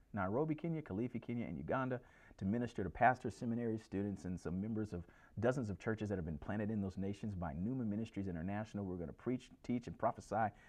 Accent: American